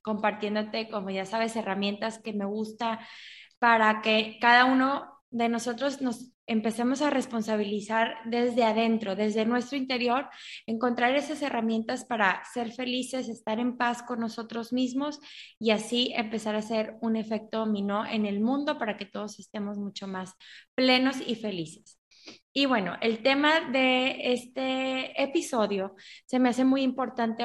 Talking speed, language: 145 wpm, English